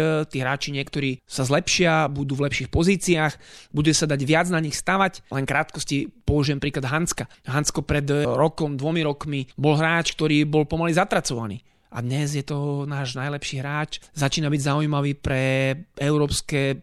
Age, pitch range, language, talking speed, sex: 30-49, 140-170 Hz, Slovak, 155 wpm, male